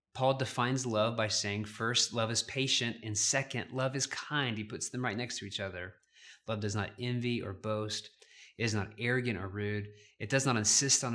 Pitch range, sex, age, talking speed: 105-130 Hz, male, 20-39, 210 wpm